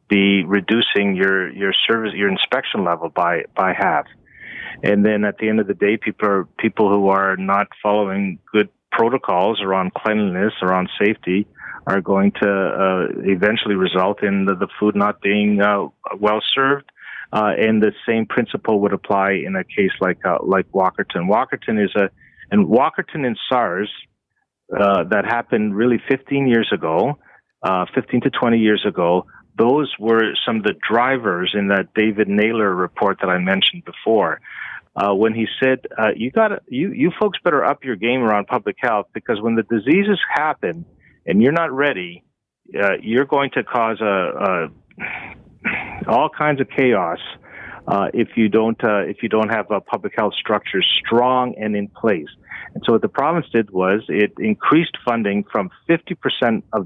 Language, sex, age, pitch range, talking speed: English, male, 40-59, 100-120 Hz, 175 wpm